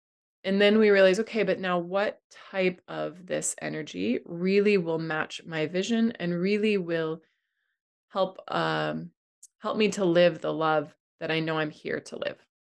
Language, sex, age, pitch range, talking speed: English, female, 20-39, 155-185 Hz, 165 wpm